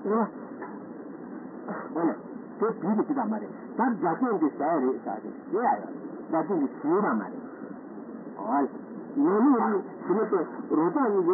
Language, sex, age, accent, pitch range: Italian, male, 60-79, Indian, 245-310 Hz